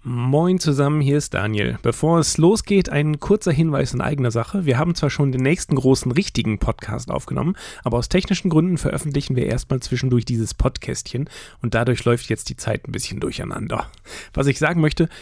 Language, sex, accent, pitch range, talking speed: German, male, German, 120-165 Hz, 185 wpm